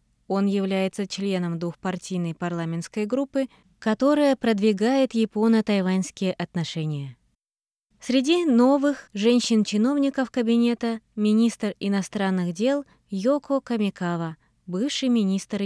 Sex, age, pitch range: female, 20-39, 185-240 Hz